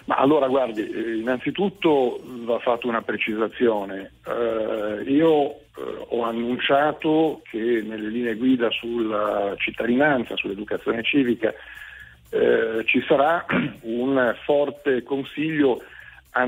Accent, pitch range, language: native, 115-135 Hz, Italian